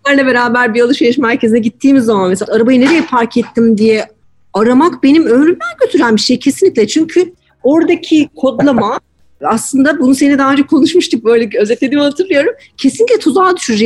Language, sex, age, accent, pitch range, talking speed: Turkish, female, 40-59, native, 210-280 Hz, 150 wpm